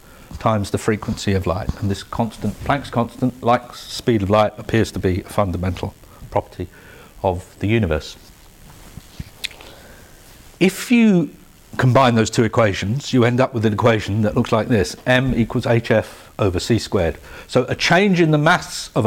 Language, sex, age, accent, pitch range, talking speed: English, male, 50-69, British, 95-125 Hz, 165 wpm